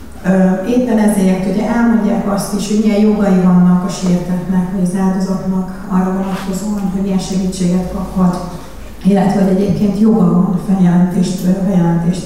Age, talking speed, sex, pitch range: 30-49, 145 wpm, female, 190-210 Hz